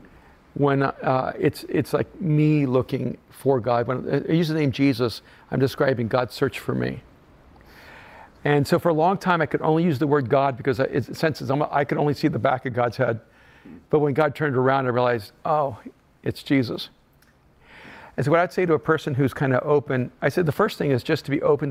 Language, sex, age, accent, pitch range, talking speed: English, male, 50-69, American, 120-145 Hz, 220 wpm